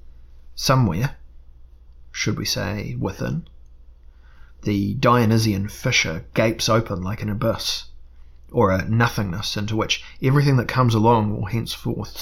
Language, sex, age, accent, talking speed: English, male, 30-49, Australian, 120 wpm